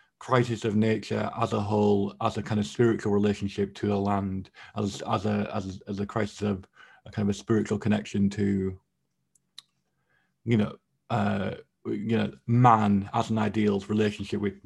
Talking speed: 170 wpm